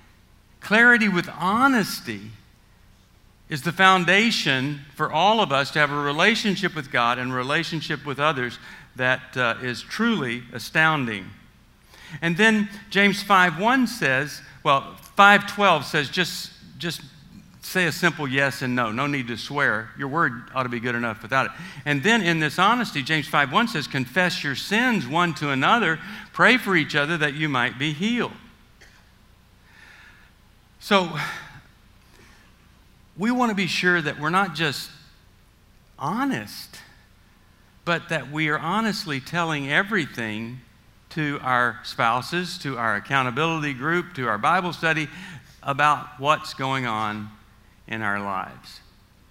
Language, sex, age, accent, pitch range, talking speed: English, male, 50-69, American, 120-175 Hz, 140 wpm